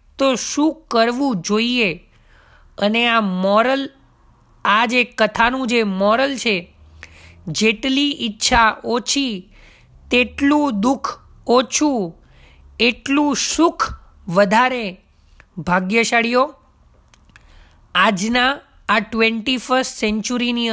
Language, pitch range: Gujarati, 205-250 Hz